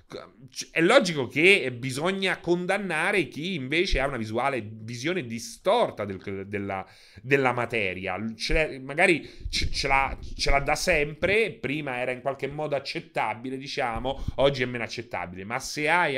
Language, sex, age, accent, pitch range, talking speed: Italian, male, 30-49, native, 110-145 Hz, 135 wpm